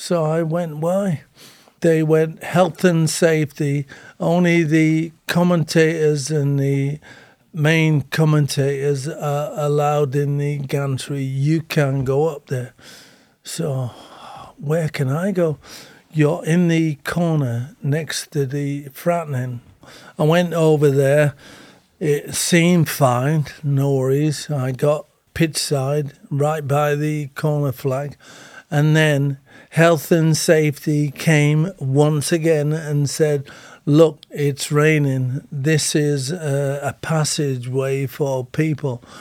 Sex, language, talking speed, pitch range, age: male, English, 120 wpm, 140-160 Hz, 50-69